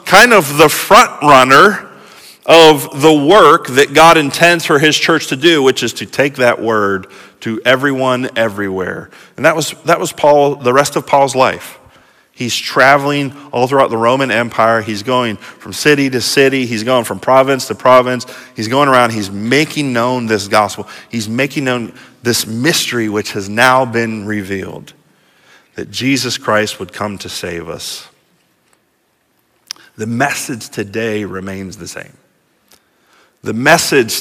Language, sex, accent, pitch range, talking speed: English, male, American, 115-160 Hz, 155 wpm